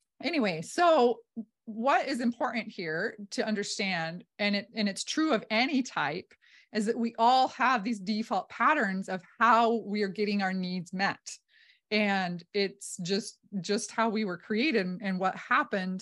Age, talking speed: 30-49, 165 wpm